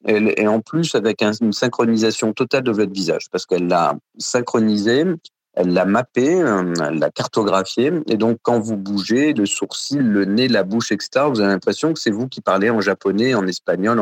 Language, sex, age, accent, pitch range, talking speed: French, male, 40-59, French, 100-120 Hz, 190 wpm